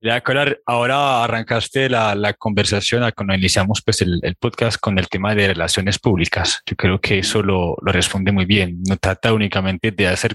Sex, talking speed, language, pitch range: male, 185 wpm, Spanish, 100-125 Hz